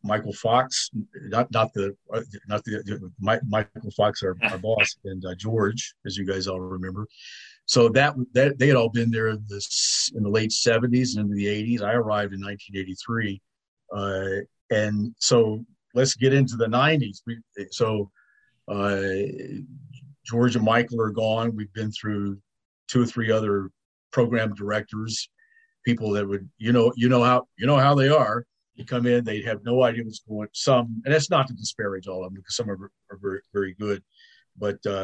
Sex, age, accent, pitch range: male, 50-69, American, 100-125 Hz